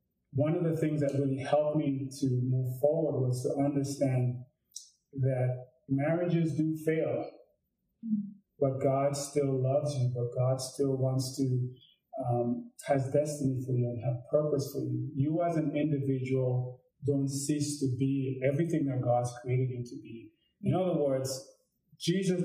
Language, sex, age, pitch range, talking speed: English, male, 30-49, 130-155 Hz, 150 wpm